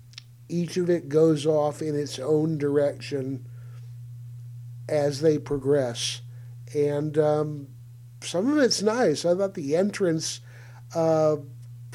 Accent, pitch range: American, 120-155 Hz